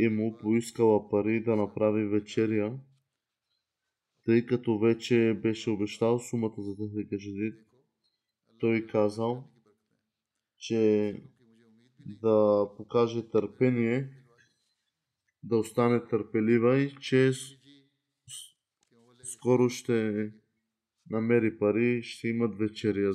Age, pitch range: 20-39, 110-125 Hz